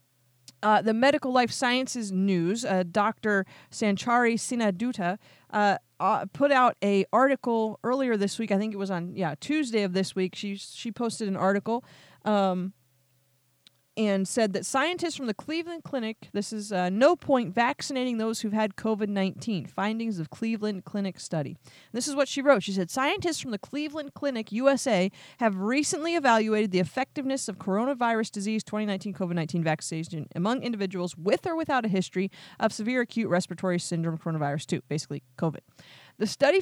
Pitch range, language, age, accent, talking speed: 180-245 Hz, English, 30-49, American, 165 wpm